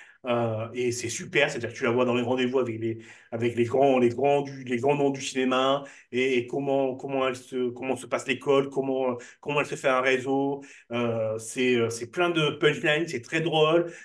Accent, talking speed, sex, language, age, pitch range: French, 220 wpm, male, French, 30-49, 125-175 Hz